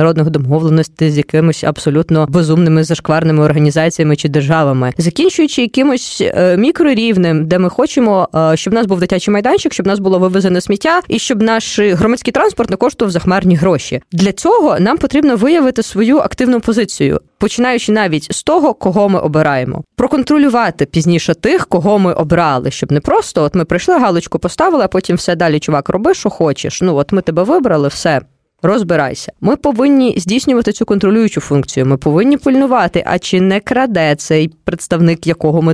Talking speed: 165 wpm